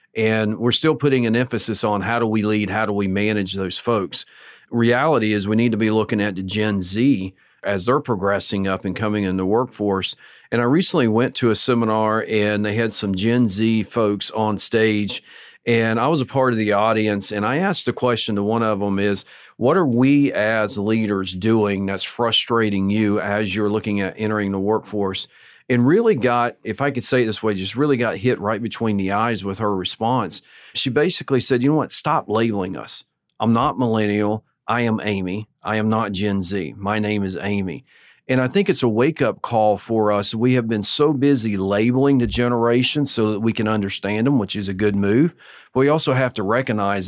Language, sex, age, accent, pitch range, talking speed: English, male, 40-59, American, 105-120 Hz, 215 wpm